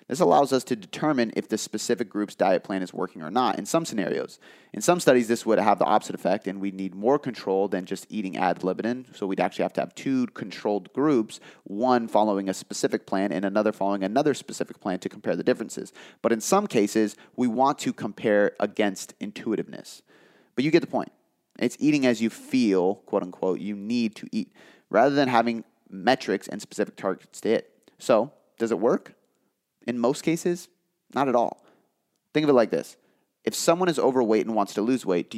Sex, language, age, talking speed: male, English, 30-49, 205 wpm